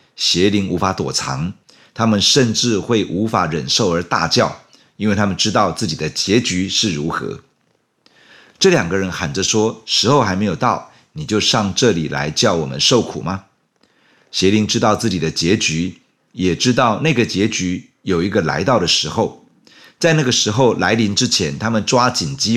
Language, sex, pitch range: Chinese, male, 95-125 Hz